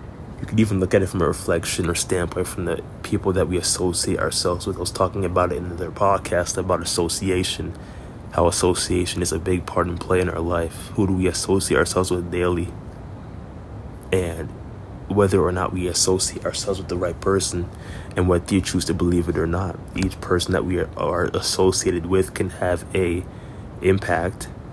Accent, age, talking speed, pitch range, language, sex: American, 20-39, 185 wpm, 85-95 Hz, English, male